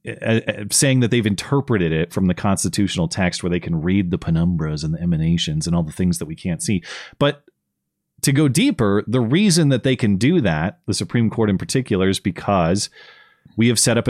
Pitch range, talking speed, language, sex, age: 95-125 Hz, 205 wpm, English, male, 30-49